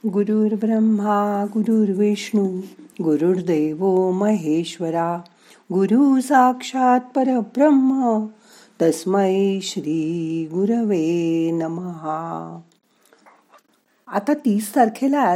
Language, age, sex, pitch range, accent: Marathi, 50-69, female, 170-230 Hz, native